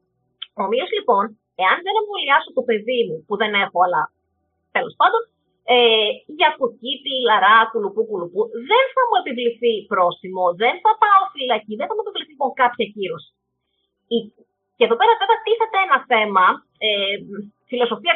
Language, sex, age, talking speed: Greek, female, 30-49, 150 wpm